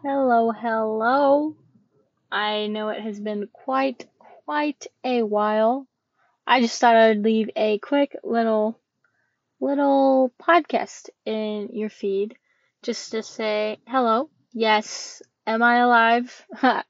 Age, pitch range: 10-29, 215-265 Hz